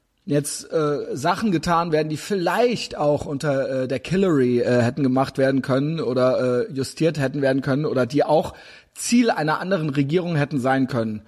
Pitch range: 130-155 Hz